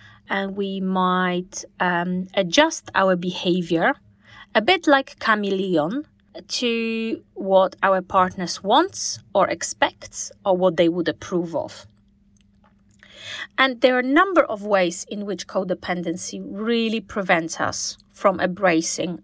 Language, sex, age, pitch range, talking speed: English, female, 30-49, 175-210 Hz, 120 wpm